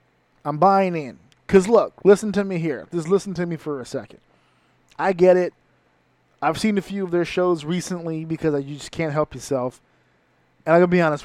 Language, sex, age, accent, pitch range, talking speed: English, male, 20-39, American, 135-170 Hz, 210 wpm